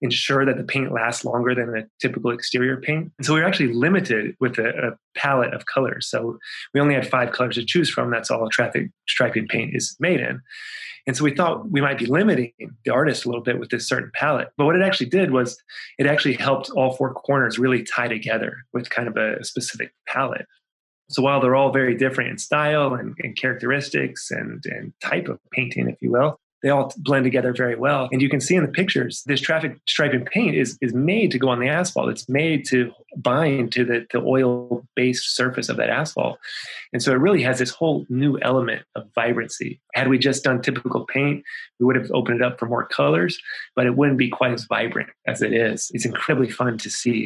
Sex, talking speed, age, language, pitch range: male, 225 wpm, 20-39, English, 120-140 Hz